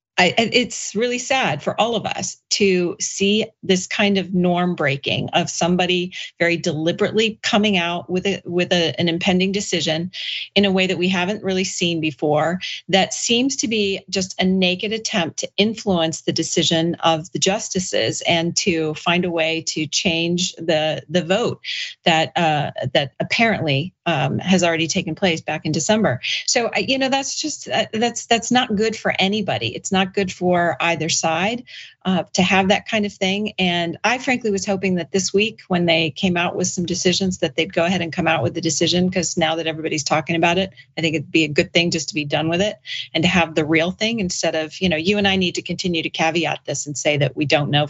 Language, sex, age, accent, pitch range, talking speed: English, female, 40-59, American, 160-195 Hz, 210 wpm